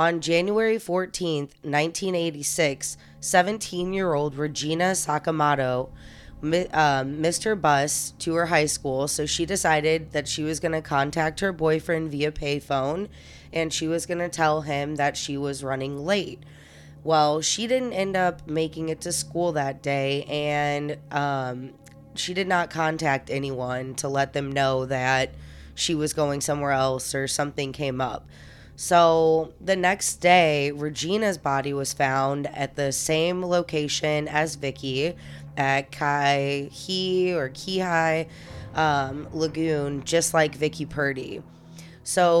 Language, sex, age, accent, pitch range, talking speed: English, female, 20-39, American, 140-170 Hz, 135 wpm